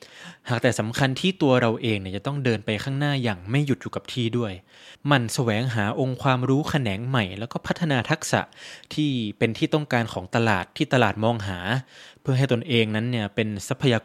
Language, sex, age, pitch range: Thai, male, 20-39, 110-140 Hz